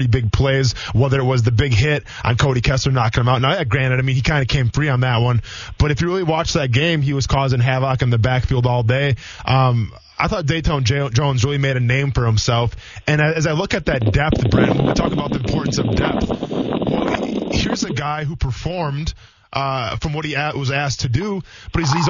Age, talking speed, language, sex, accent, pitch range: 20-39, 230 wpm, English, male, American, 125-175 Hz